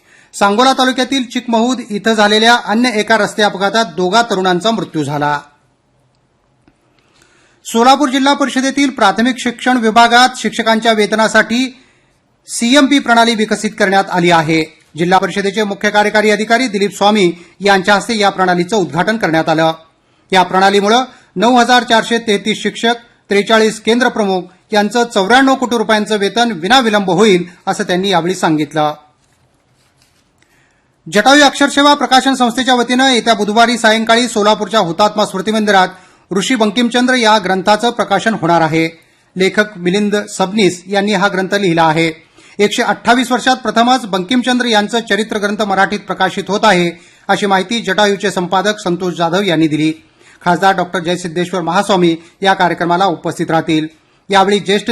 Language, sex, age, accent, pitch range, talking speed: English, male, 40-59, Indian, 185-230 Hz, 90 wpm